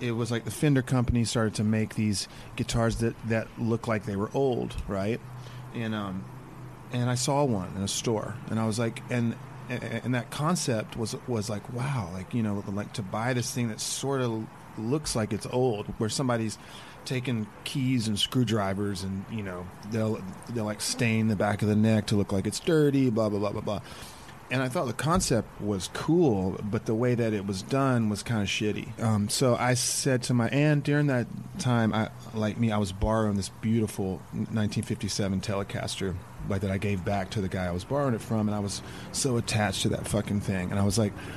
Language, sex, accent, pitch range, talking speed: English, male, American, 105-125 Hz, 215 wpm